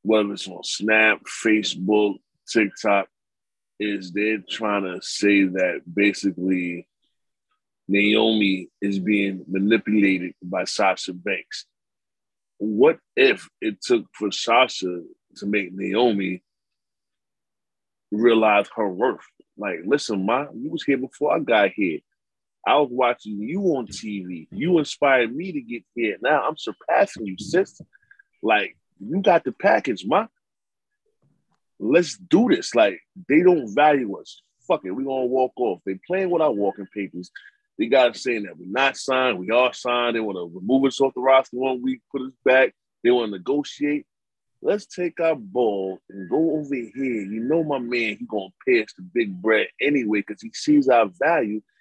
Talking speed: 160 wpm